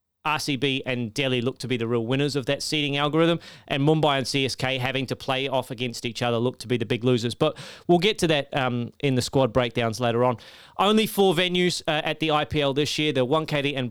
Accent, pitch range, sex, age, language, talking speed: Australian, 125-155 Hz, male, 30-49, English, 235 wpm